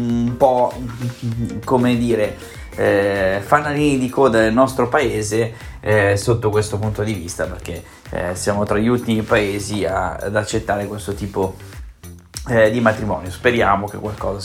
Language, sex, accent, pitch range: Italian, male, native, 105-125 Hz